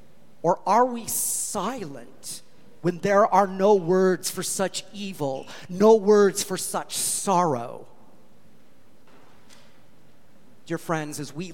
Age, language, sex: 40-59, English, male